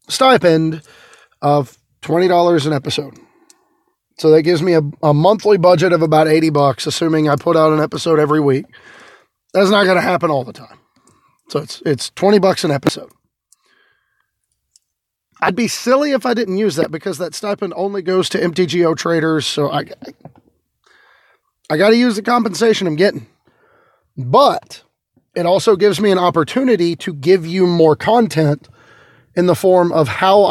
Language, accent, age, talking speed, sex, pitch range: English, American, 30-49, 165 wpm, male, 145-195 Hz